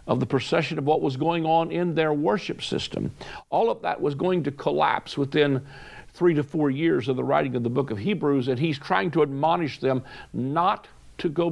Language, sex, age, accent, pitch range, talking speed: English, male, 60-79, American, 130-175 Hz, 215 wpm